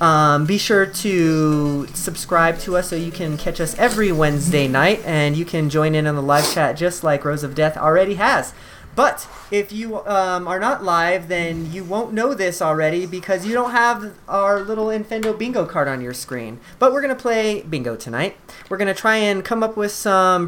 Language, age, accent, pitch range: English, 30-49, American, 155-205 Hz